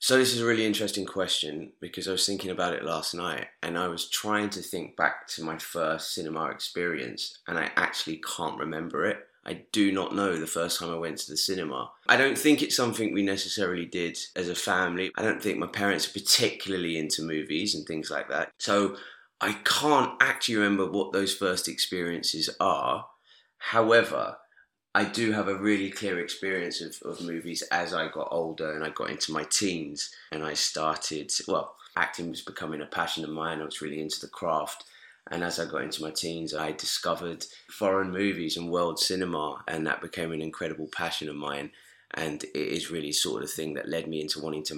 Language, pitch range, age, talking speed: English, 80-95 Hz, 20-39, 205 wpm